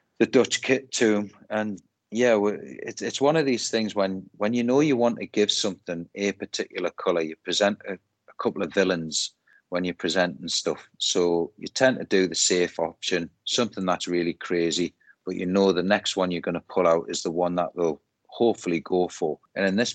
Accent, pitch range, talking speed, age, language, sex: British, 85-100 Hz, 205 wpm, 30-49, English, male